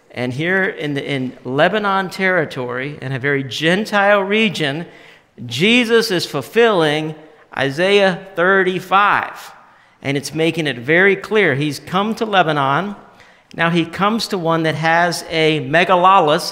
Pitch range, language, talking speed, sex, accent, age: 135-170 Hz, English, 130 wpm, male, American, 50-69